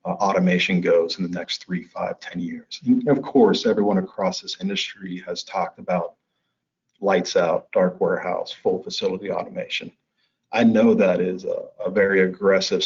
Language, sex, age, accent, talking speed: English, male, 40-59, American, 165 wpm